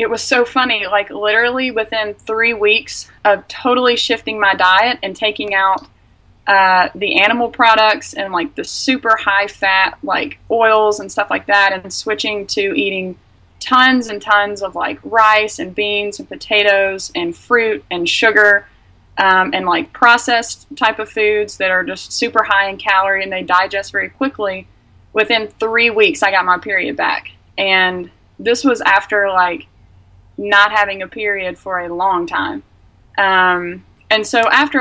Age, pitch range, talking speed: 20-39, 185-230 Hz, 165 wpm